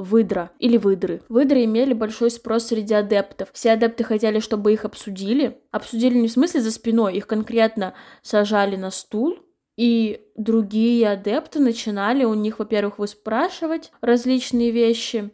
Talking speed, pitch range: 140 wpm, 210-245 Hz